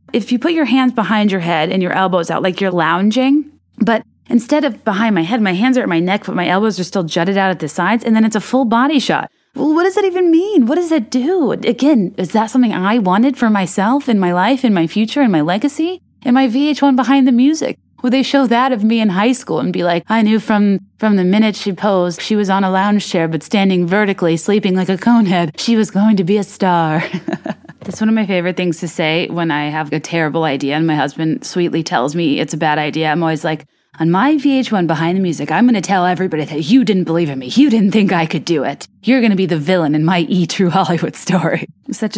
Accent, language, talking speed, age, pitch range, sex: American, English, 260 wpm, 20-39, 170-240 Hz, female